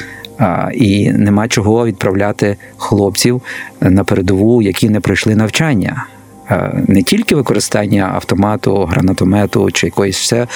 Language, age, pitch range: Ukrainian, 50-69, 95-115 Hz